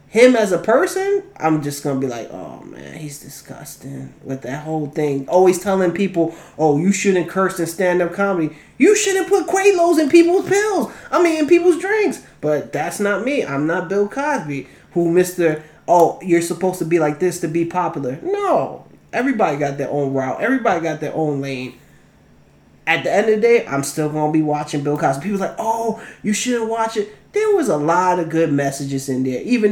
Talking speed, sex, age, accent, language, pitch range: 210 wpm, male, 20-39, American, English, 155-240 Hz